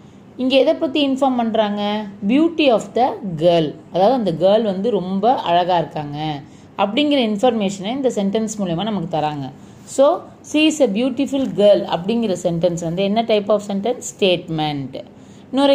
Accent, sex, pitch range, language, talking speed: native, female, 200-260 Hz, Tamil, 145 wpm